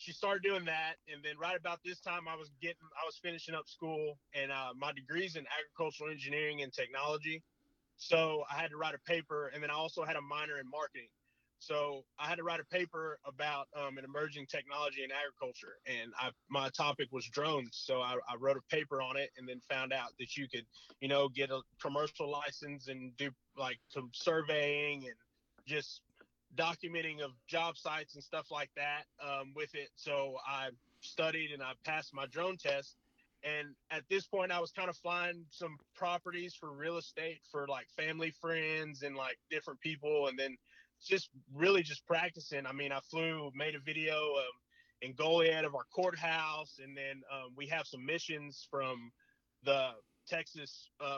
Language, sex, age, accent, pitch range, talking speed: English, male, 20-39, American, 140-160 Hz, 190 wpm